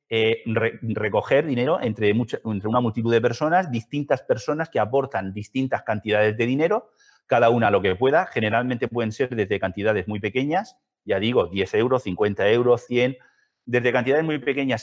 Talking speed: 160 wpm